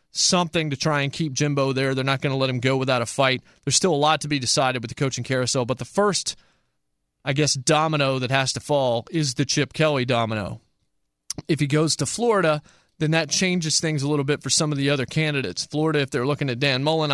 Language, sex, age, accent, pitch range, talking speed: English, male, 30-49, American, 125-150 Hz, 240 wpm